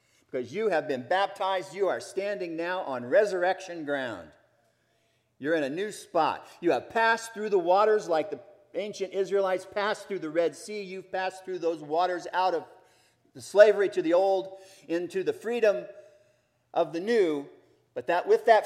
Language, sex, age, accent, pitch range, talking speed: English, male, 40-59, American, 120-190 Hz, 175 wpm